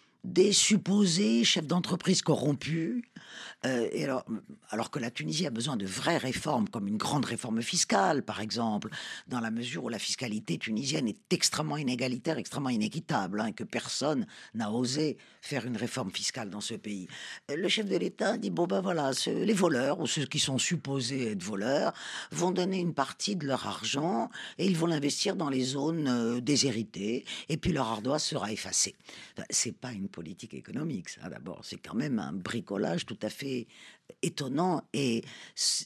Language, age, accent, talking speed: French, 50-69, French, 180 wpm